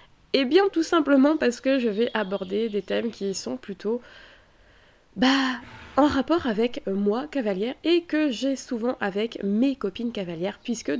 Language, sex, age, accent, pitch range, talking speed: French, female, 20-39, French, 195-250 Hz, 165 wpm